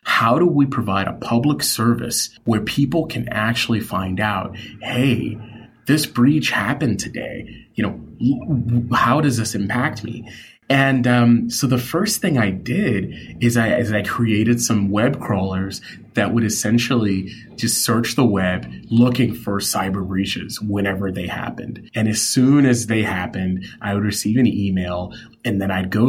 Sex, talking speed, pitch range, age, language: male, 160 wpm, 100-120 Hz, 30-49, English